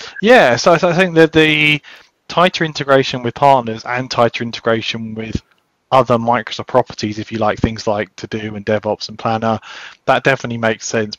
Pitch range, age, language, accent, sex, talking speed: 105-125 Hz, 20-39, English, British, male, 170 wpm